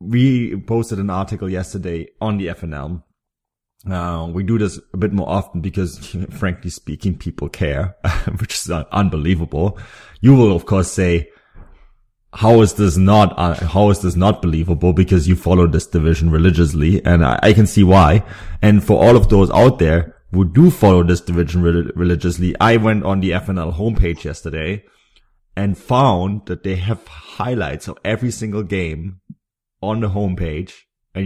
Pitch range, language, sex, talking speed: 85-105 Hz, English, male, 170 wpm